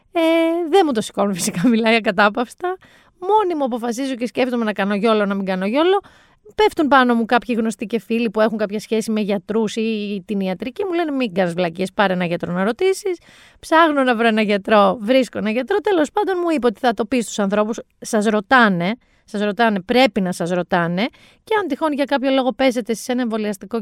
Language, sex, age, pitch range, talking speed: Greek, female, 30-49, 210-265 Hz, 210 wpm